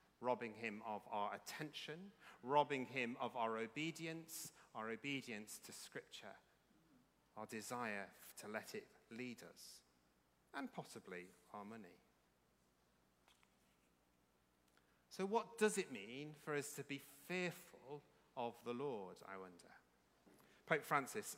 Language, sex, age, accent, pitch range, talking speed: English, male, 40-59, British, 115-165 Hz, 120 wpm